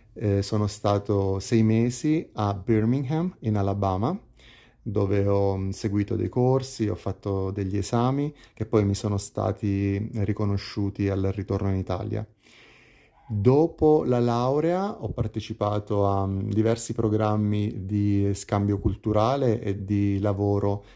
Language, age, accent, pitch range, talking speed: Italian, 30-49, native, 100-115 Hz, 120 wpm